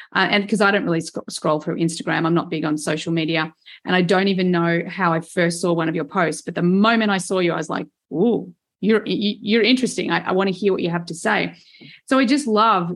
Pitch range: 175-220 Hz